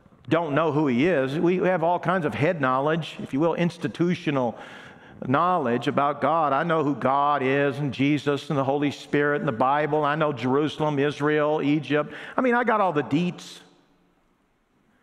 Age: 50-69